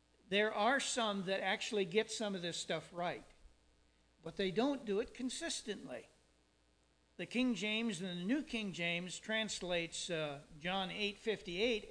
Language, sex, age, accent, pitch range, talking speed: English, male, 50-69, American, 155-220 Hz, 150 wpm